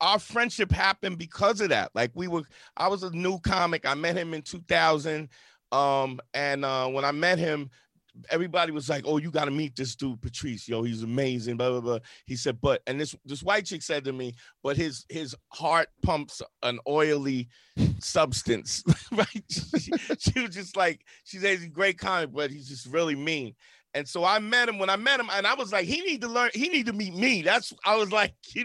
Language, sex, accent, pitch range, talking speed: English, male, American, 145-205 Hz, 220 wpm